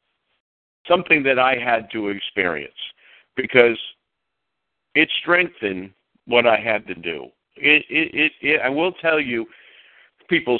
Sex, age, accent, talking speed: male, 50-69, American, 130 wpm